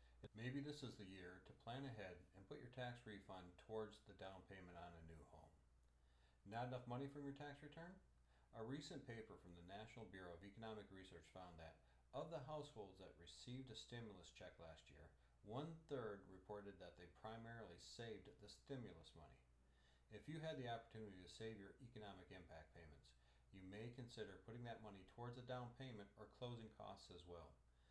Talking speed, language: 185 wpm, English